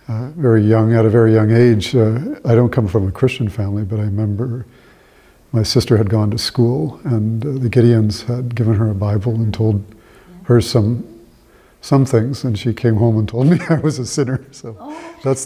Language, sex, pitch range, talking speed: English, male, 110-135 Hz, 205 wpm